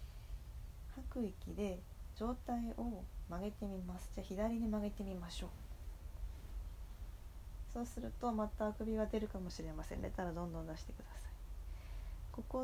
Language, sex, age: Japanese, female, 20-39